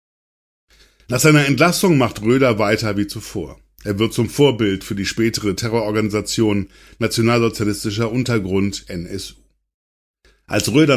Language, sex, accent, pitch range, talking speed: German, male, German, 100-125 Hz, 115 wpm